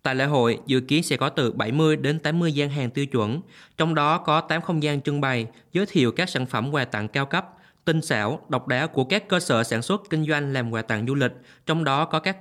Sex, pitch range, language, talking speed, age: male, 120-155 Hz, Vietnamese, 255 wpm, 20-39